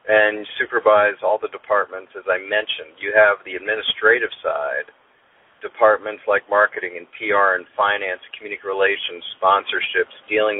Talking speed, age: 135 wpm, 40-59